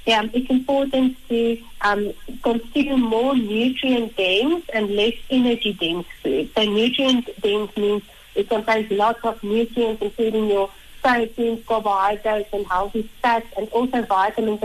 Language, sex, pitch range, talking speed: English, female, 200-235 Hz, 125 wpm